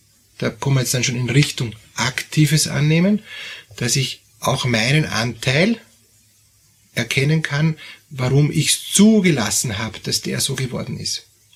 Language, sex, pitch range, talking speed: German, male, 115-145 Hz, 140 wpm